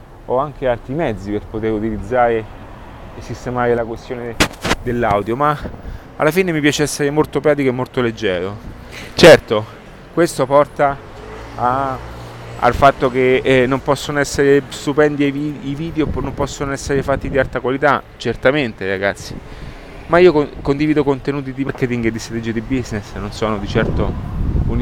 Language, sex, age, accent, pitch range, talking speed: Italian, male, 30-49, native, 110-140 Hz, 155 wpm